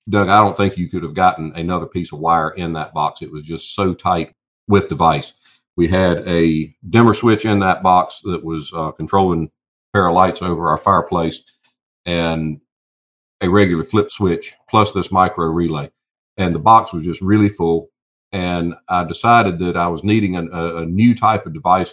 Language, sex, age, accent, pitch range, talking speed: English, male, 50-69, American, 80-100 Hz, 195 wpm